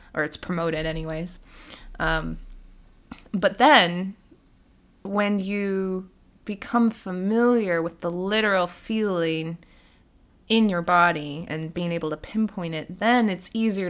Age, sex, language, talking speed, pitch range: 20-39, female, English, 115 wpm, 165-210 Hz